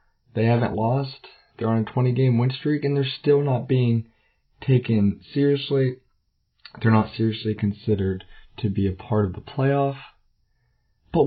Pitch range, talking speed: 105-140 Hz, 155 wpm